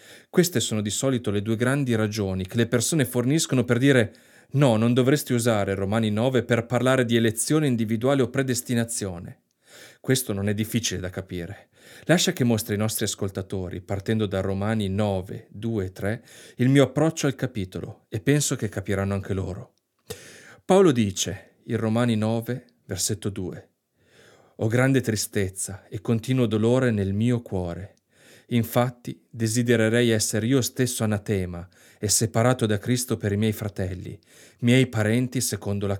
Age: 30-49